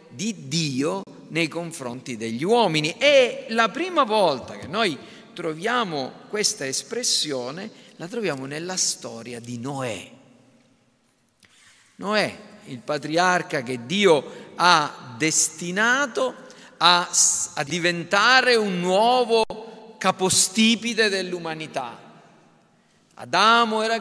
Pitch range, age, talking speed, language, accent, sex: 155-220 Hz, 50-69, 90 wpm, Italian, native, male